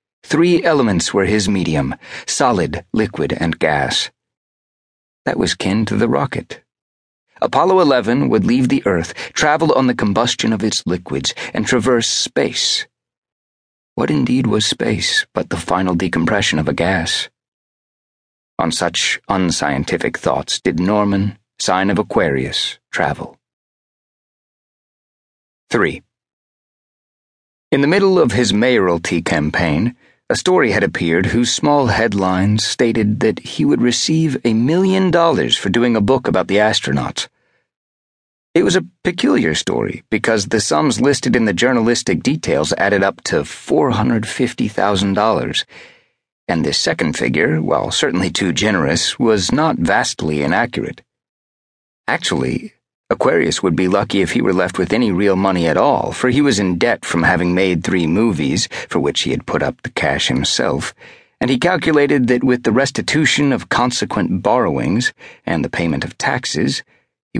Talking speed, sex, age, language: 145 wpm, male, 40-59, English